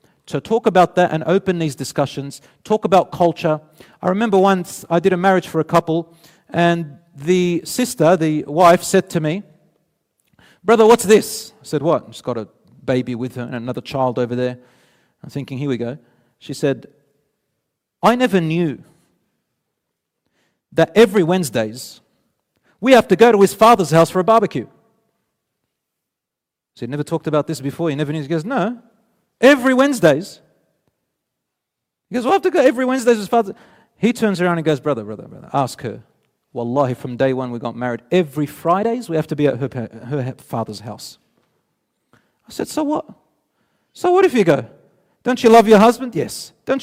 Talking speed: 180 wpm